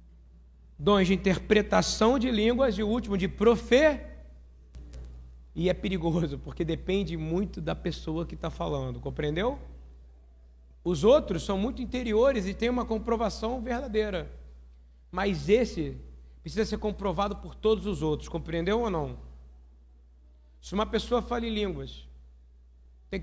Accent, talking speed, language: Brazilian, 130 wpm, Portuguese